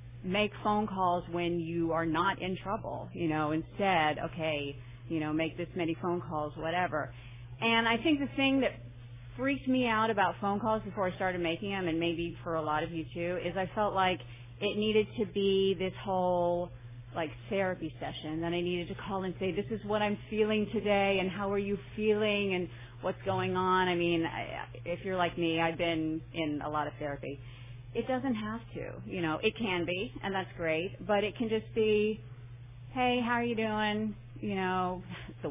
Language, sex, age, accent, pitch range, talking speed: English, female, 30-49, American, 155-200 Hz, 200 wpm